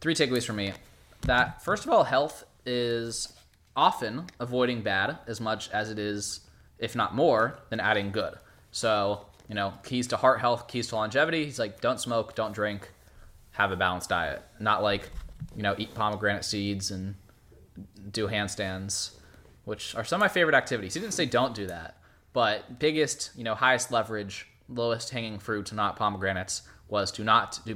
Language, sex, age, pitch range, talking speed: English, male, 20-39, 105-125 Hz, 180 wpm